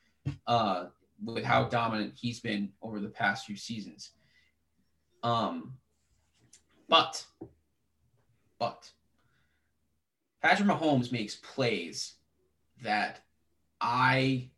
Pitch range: 100-135 Hz